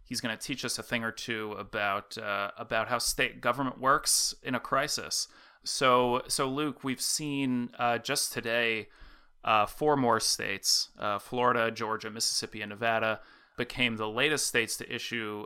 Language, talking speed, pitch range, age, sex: English, 165 wpm, 110-125 Hz, 30-49, male